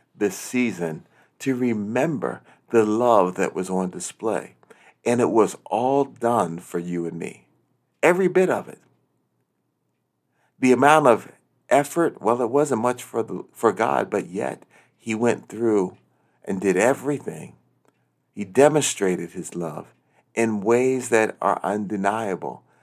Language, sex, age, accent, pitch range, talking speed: English, male, 50-69, American, 105-135 Hz, 135 wpm